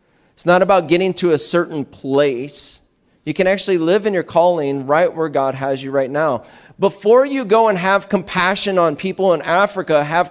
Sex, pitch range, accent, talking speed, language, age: male, 135-195 Hz, American, 190 wpm, English, 30-49